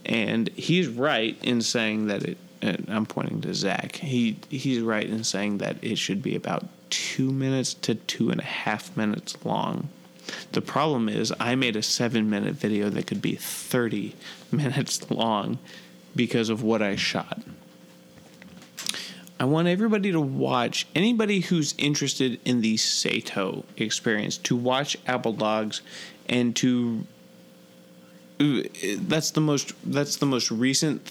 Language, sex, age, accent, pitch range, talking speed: English, male, 30-49, American, 110-135 Hz, 145 wpm